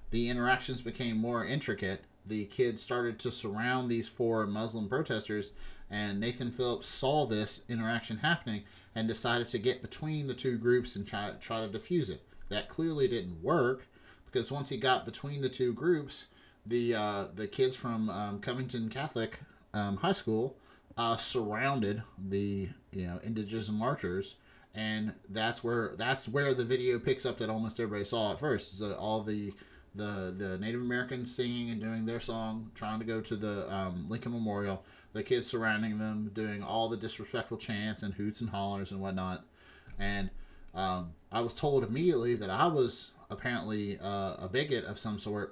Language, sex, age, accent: English, male, 30-49, American